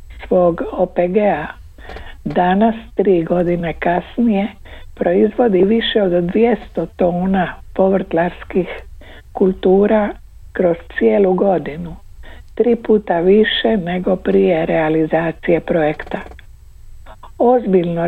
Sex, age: female, 60-79